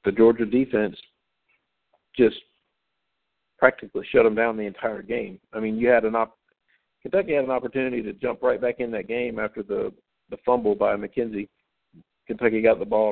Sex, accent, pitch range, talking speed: male, American, 105-125 Hz, 175 wpm